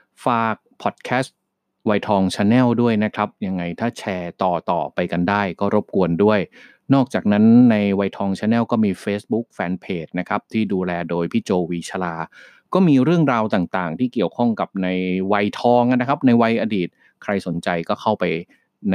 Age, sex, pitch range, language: 30-49, male, 90-110 Hz, Thai